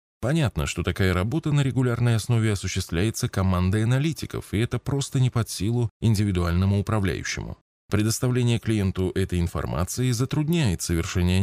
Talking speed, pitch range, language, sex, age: 125 wpm, 90-125 Hz, Russian, male, 20-39